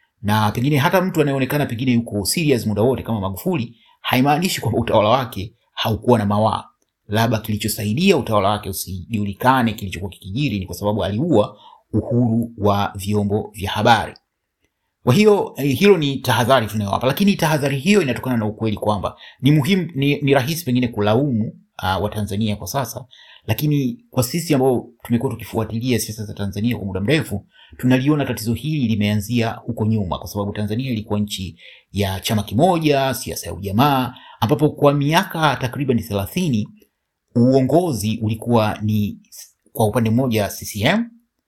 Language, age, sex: Swahili, 30-49, male